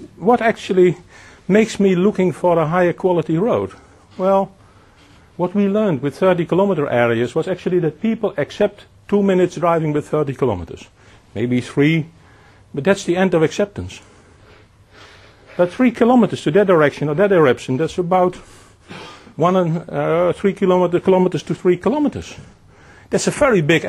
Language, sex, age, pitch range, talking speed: English, male, 50-69, 130-185 Hz, 150 wpm